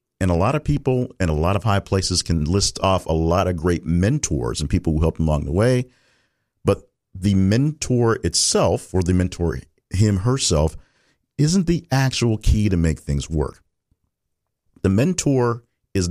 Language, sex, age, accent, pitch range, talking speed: English, male, 50-69, American, 85-110 Hz, 170 wpm